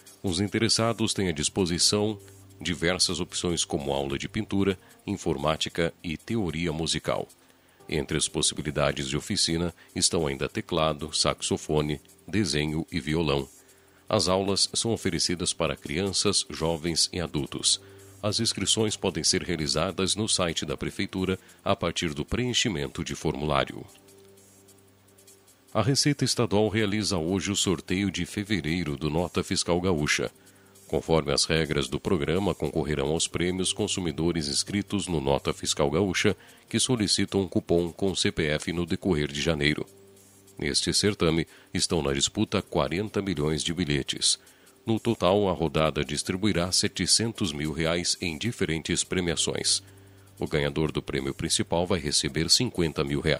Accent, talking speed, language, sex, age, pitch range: Brazilian, 135 wpm, Portuguese, male, 50-69, 80-100 Hz